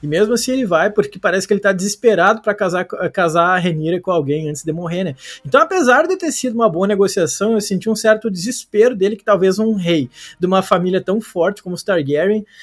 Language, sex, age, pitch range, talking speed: Portuguese, male, 20-39, 155-205 Hz, 230 wpm